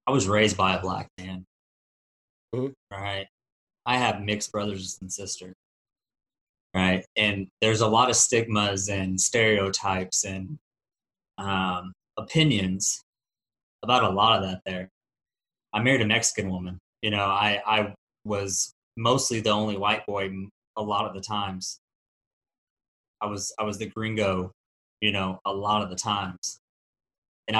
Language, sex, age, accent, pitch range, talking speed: English, male, 20-39, American, 95-110 Hz, 145 wpm